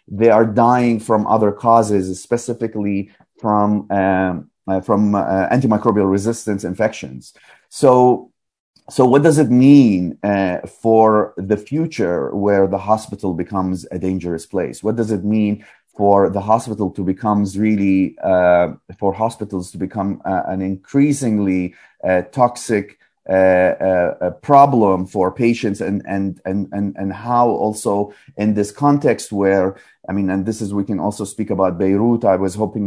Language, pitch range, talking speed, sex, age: English, 95-110 Hz, 150 wpm, male, 30-49